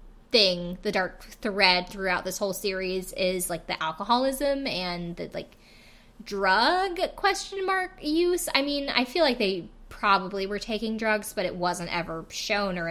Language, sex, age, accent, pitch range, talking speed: English, female, 20-39, American, 180-240 Hz, 165 wpm